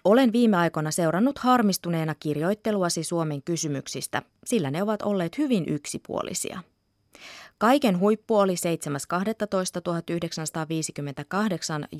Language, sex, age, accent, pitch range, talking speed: Finnish, female, 20-39, native, 155-215 Hz, 90 wpm